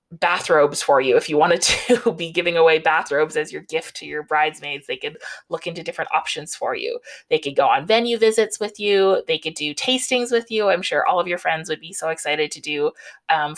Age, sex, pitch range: 20-39, female, 165-240 Hz